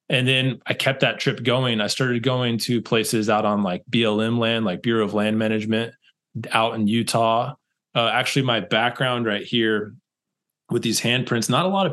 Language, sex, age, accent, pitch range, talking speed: English, male, 20-39, American, 105-125 Hz, 190 wpm